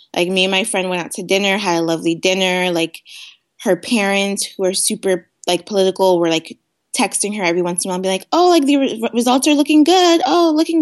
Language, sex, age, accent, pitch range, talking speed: English, female, 20-39, American, 170-210 Hz, 235 wpm